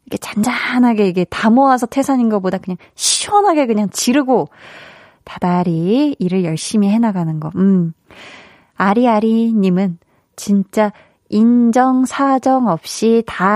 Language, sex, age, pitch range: Korean, female, 20-39, 185-260 Hz